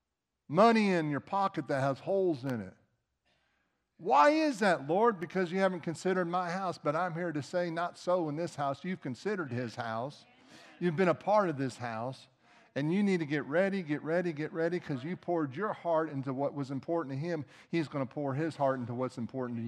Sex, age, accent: male, 50-69, American